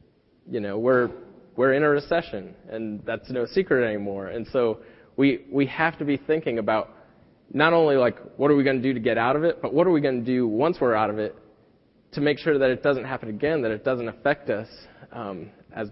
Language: English